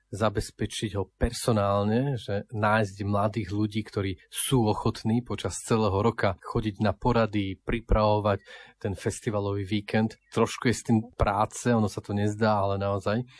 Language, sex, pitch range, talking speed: Slovak, male, 100-115 Hz, 140 wpm